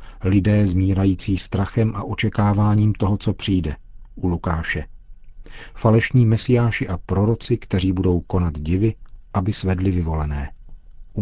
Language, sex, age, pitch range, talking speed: Czech, male, 40-59, 95-110 Hz, 120 wpm